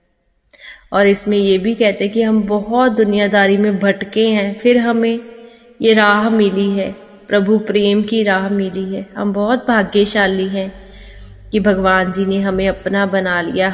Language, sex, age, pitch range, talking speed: Hindi, female, 20-39, 190-210 Hz, 160 wpm